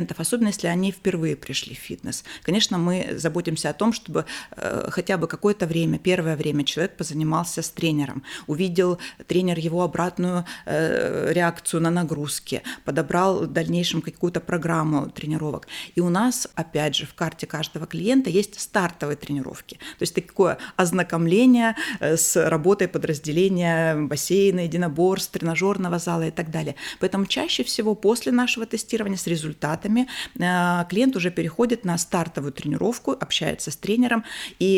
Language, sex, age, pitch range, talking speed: Russian, female, 30-49, 160-195 Hz, 140 wpm